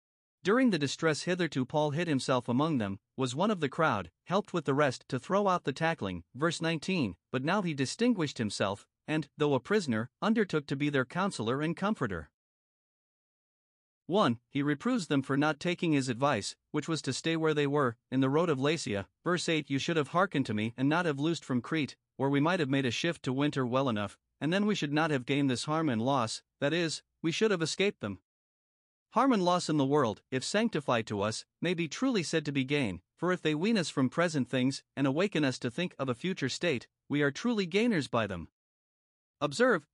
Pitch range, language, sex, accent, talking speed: 130-170 Hz, English, male, American, 220 wpm